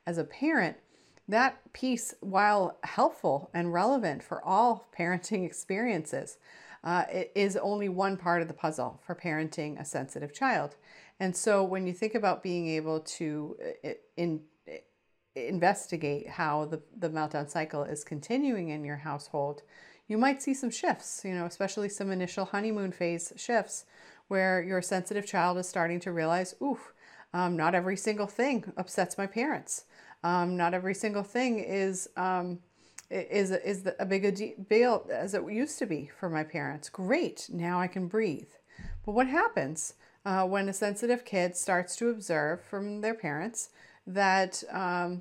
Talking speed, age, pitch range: 155 wpm, 40-59, 170-215 Hz